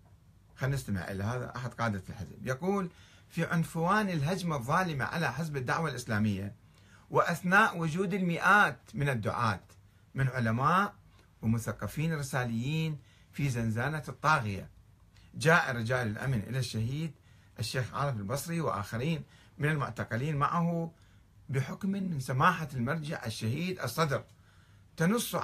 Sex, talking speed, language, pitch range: male, 110 wpm, Arabic, 110-165 Hz